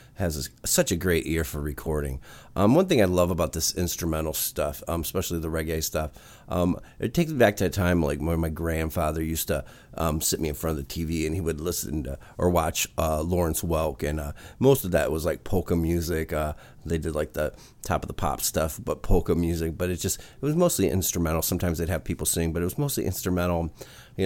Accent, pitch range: American, 80-100 Hz